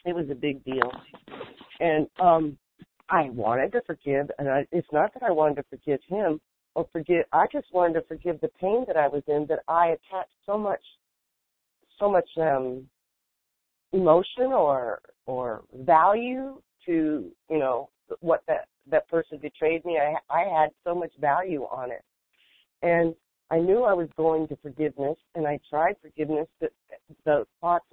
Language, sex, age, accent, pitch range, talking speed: English, female, 50-69, American, 145-175 Hz, 170 wpm